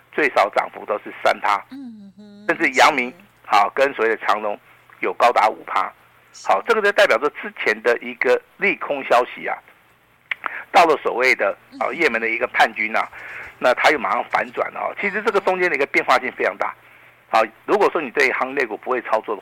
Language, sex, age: Chinese, male, 50-69